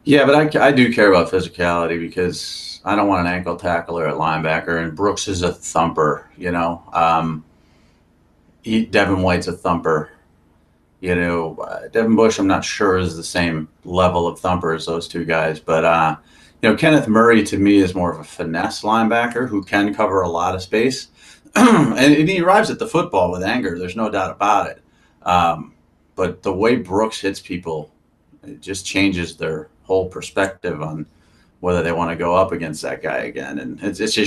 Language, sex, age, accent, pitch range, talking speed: English, male, 30-49, American, 85-100 Hz, 195 wpm